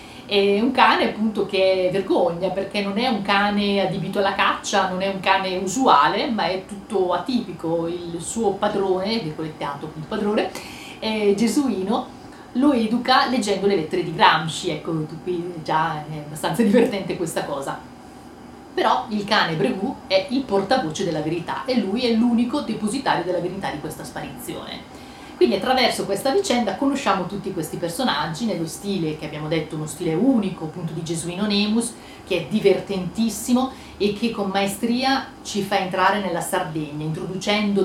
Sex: female